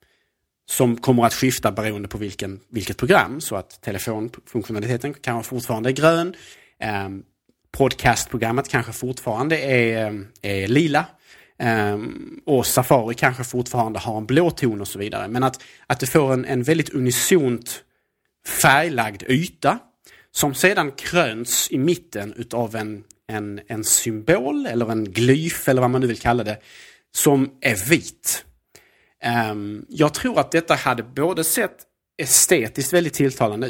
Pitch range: 110-140 Hz